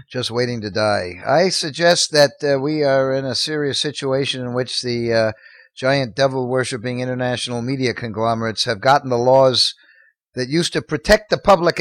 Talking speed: 170 wpm